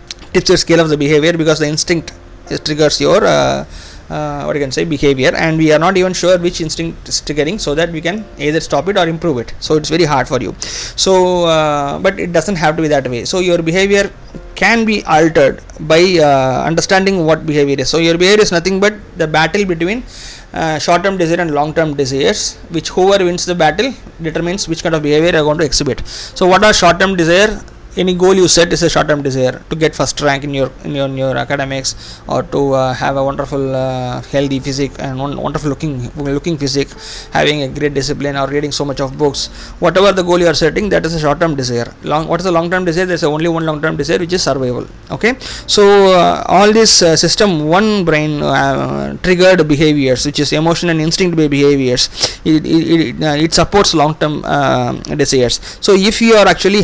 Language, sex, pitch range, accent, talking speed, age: Tamil, male, 140-175 Hz, native, 220 wpm, 30-49